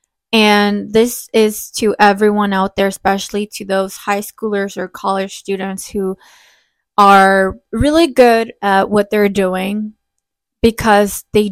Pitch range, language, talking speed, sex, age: 190-210 Hz, English, 130 wpm, female, 20-39